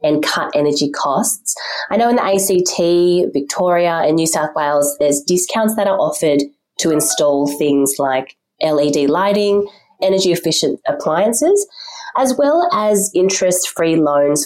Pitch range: 145-205 Hz